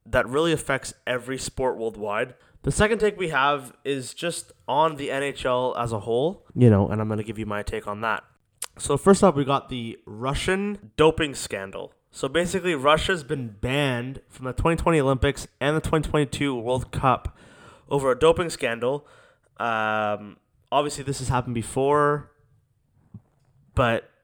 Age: 20-39